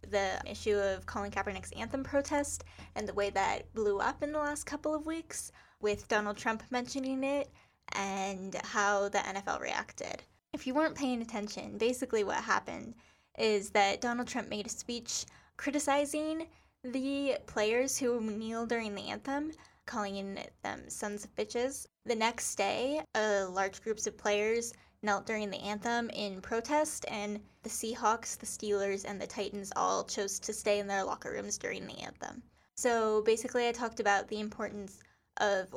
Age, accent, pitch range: 10-29, American, 205-245 Hz